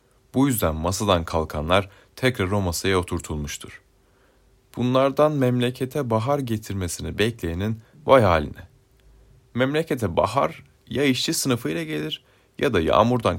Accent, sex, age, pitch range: native, male, 30-49, 90-120 Hz